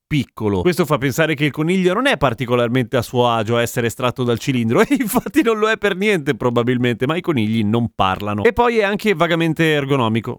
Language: Italian